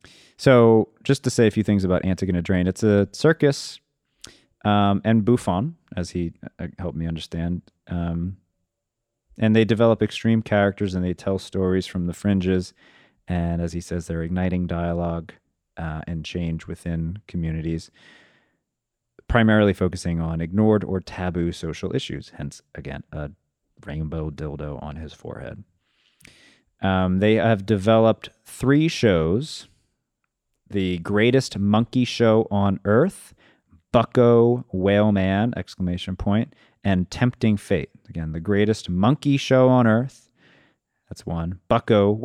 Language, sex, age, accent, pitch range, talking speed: English, male, 30-49, American, 85-115 Hz, 130 wpm